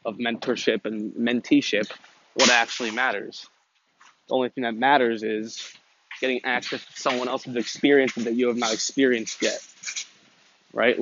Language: English